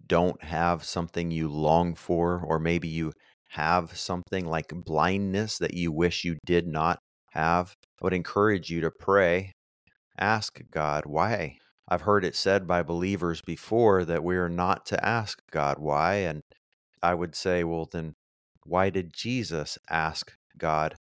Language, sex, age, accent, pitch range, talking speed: English, male, 30-49, American, 80-95 Hz, 155 wpm